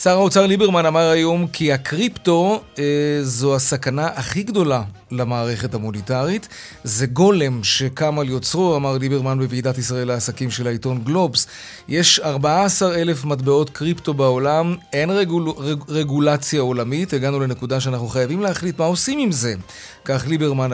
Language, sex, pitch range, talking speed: Hebrew, male, 125-155 Hz, 140 wpm